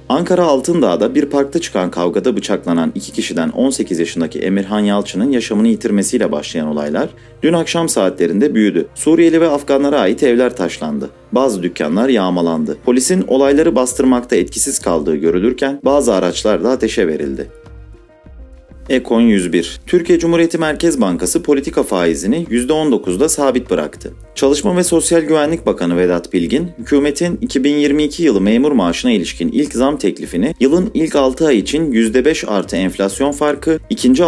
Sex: male